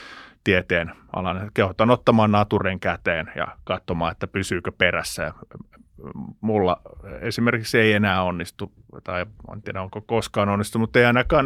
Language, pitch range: Finnish, 95-115 Hz